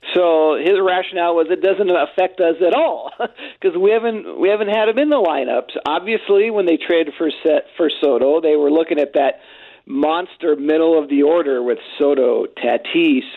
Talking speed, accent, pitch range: 185 wpm, American, 160-245 Hz